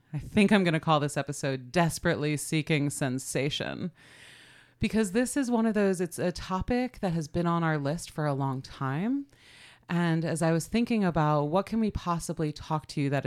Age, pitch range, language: 30-49, 140-175 Hz, English